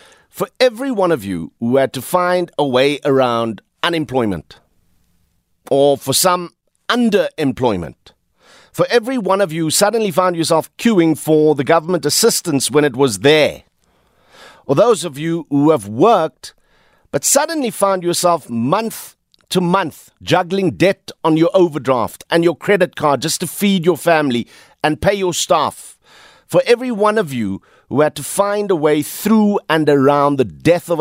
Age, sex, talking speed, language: 50-69, male, 160 wpm, English